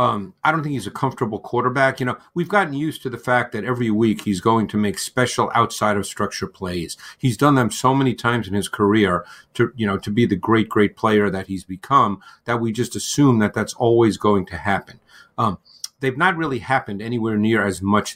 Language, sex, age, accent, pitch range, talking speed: English, male, 50-69, American, 105-130 Hz, 225 wpm